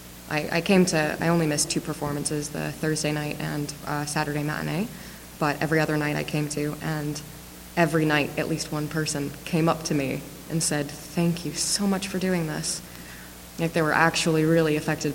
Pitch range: 140-160 Hz